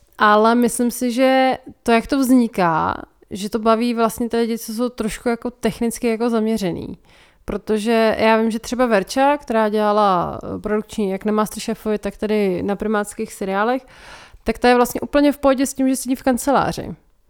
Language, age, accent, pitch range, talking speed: Czech, 30-49, native, 205-235 Hz, 175 wpm